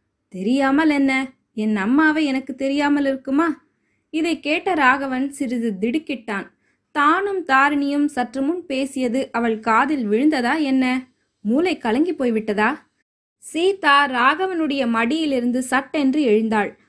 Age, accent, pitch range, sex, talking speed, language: 20-39, native, 225-285 Hz, female, 105 wpm, Tamil